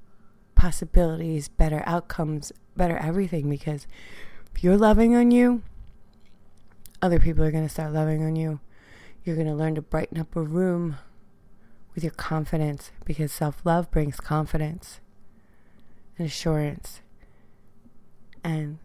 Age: 30-49